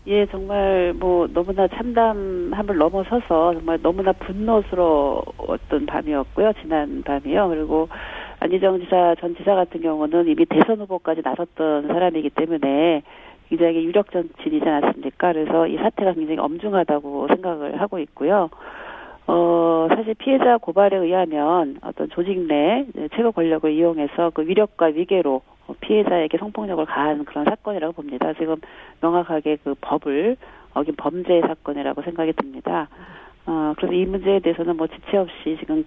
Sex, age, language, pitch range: female, 40-59, Korean, 155-195 Hz